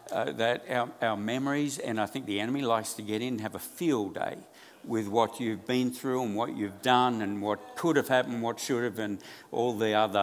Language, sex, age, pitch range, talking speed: English, male, 60-79, 105-125 Hz, 235 wpm